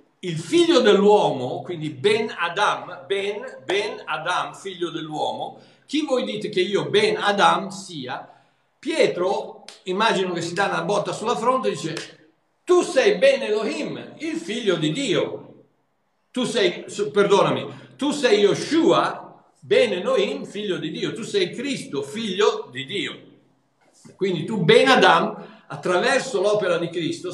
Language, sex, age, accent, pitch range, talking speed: Italian, male, 60-79, native, 155-255 Hz, 125 wpm